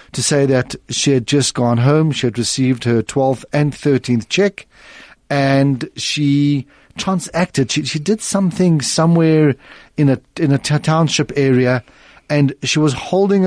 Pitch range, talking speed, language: 130-155 Hz, 155 wpm, English